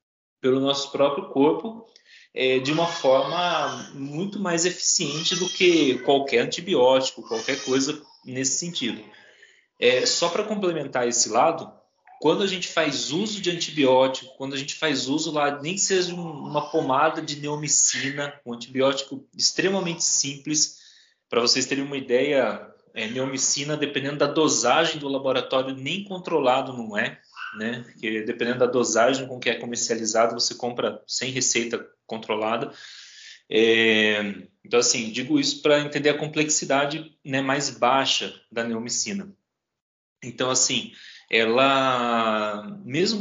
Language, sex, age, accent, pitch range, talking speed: Portuguese, male, 20-39, Brazilian, 125-170 Hz, 130 wpm